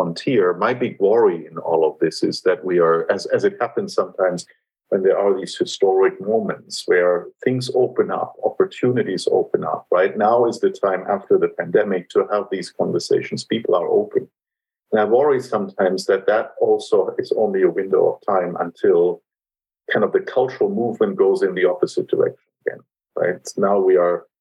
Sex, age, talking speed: male, 50-69, 180 wpm